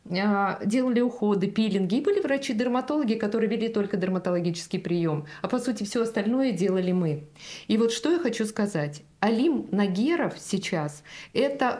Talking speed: 140 wpm